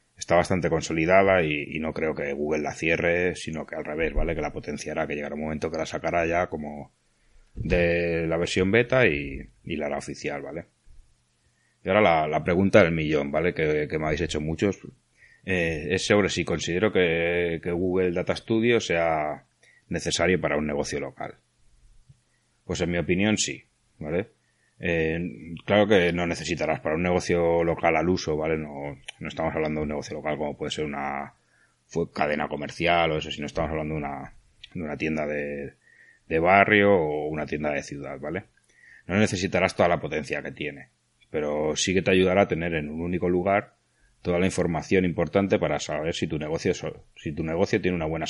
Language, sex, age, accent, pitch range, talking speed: Spanish, male, 30-49, Spanish, 75-90 Hz, 190 wpm